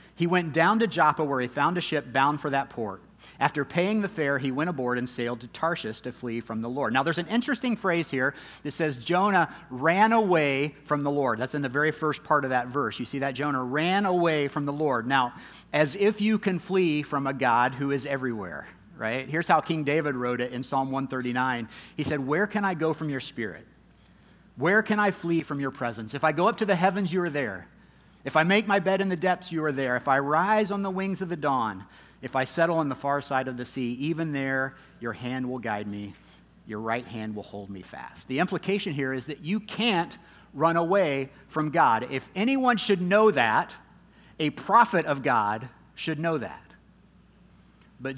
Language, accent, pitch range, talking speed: English, American, 130-180 Hz, 220 wpm